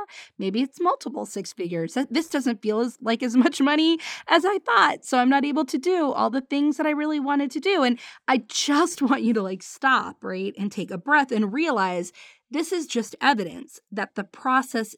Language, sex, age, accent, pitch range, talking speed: English, female, 30-49, American, 205-295 Hz, 210 wpm